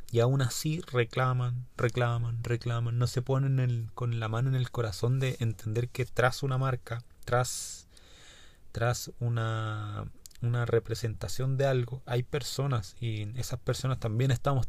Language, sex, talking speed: Spanish, male, 150 wpm